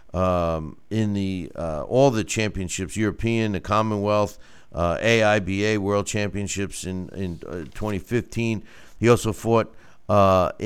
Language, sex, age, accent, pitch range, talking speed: English, male, 50-69, American, 95-115 Hz, 125 wpm